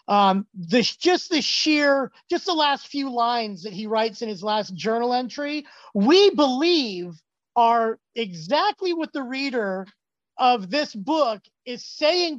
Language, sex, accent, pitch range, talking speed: English, male, American, 215-270 Hz, 140 wpm